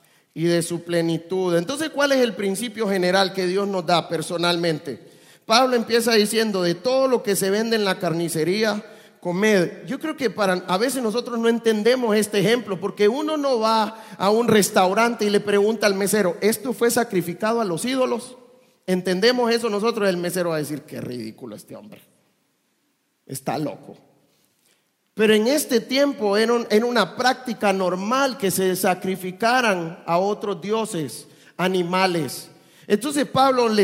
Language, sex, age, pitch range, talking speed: English, male, 40-59, 180-230 Hz, 160 wpm